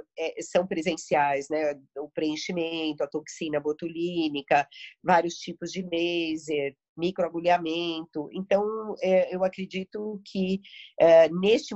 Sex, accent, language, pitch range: female, Brazilian, Portuguese, 170-205 Hz